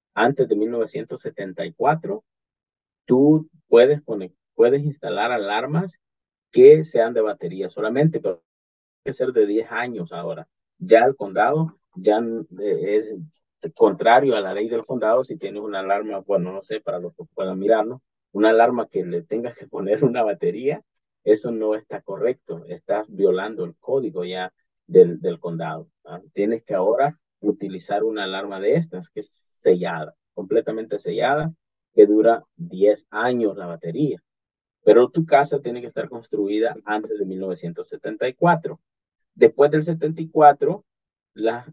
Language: English